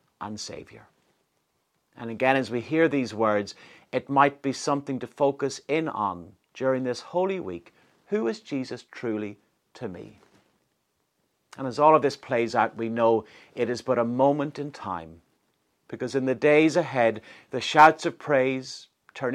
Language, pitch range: English, 115-155 Hz